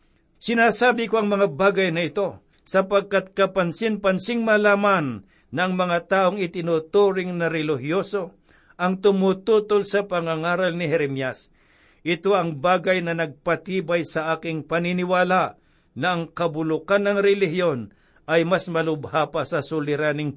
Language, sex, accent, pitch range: Filipino, male, native, 155-190 Hz